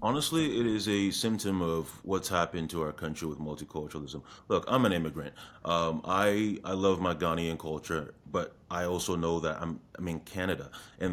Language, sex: English, male